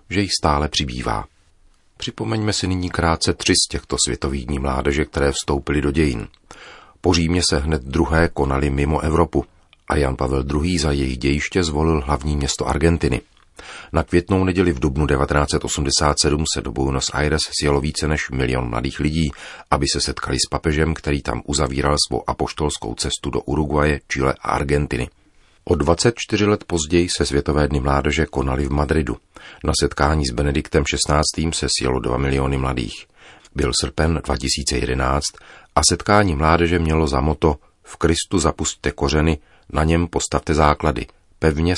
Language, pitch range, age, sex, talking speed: Czech, 70-85 Hz, 40-59, male, 155 wpm